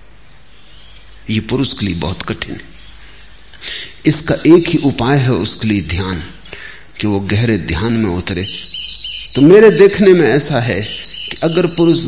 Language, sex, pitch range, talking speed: Hindi, male, 100-150 Hz, 150 wpm